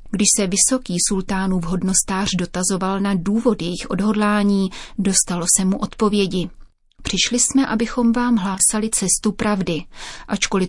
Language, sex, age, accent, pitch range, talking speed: Czech, female, 30-49, native, 180-210 Hz, 125 wpm